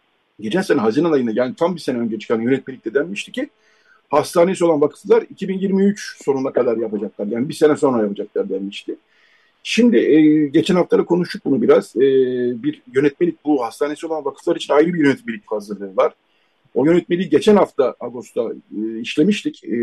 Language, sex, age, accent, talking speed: Turkish, male, 50-69, native, 165 wpm